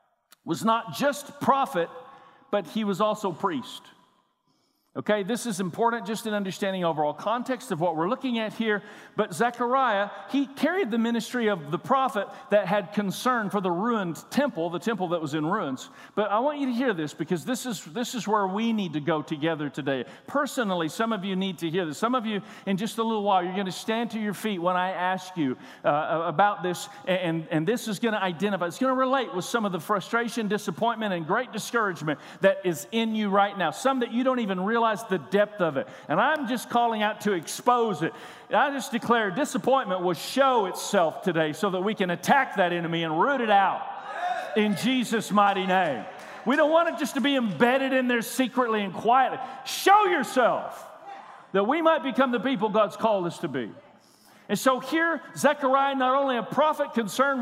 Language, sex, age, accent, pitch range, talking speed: English, male, 50-69, American, 185-255 Hz, 205 wpm